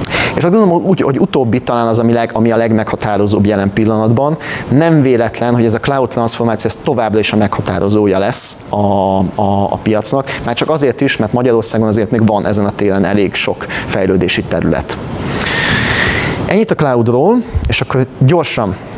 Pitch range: 110-140 Hz